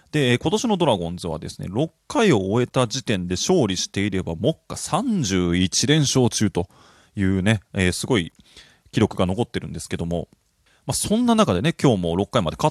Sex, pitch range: male, 95-135 Hz